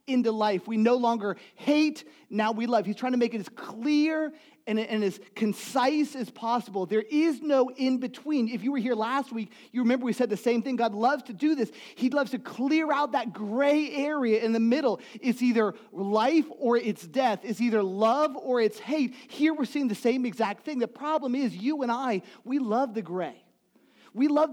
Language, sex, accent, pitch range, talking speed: English, male, American, 215-270 Hz, 210 wpm